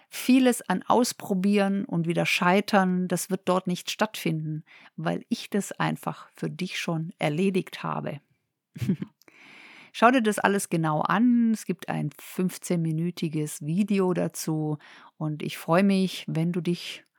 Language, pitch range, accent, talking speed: German, 160-200 Hz, German, 135 wpm